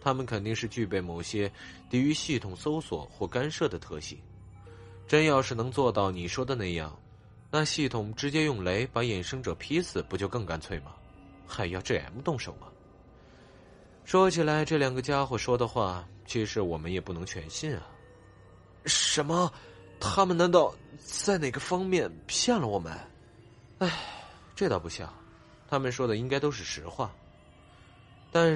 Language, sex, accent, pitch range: Chinese, male, native, 95-140 Hz